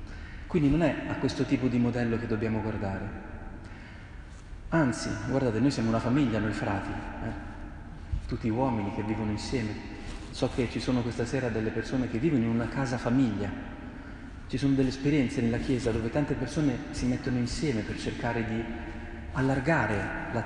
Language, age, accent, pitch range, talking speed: Italian, 40-59, native, 105-130 Hz, 165 wpm